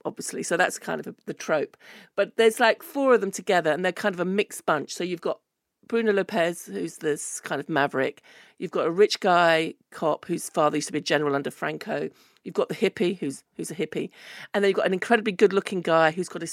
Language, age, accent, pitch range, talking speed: English, 40-59, British, 175-225 Hz, 240 wpm